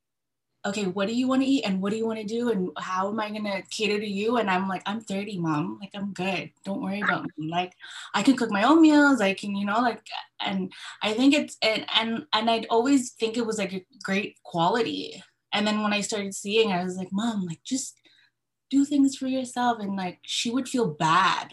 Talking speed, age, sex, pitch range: 240 wpm, 20-39, female, 180-235 Hz